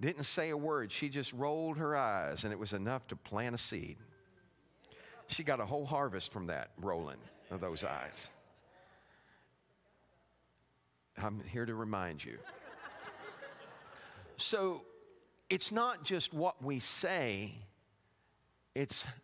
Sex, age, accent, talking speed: male, 50-69, American, 130 wpm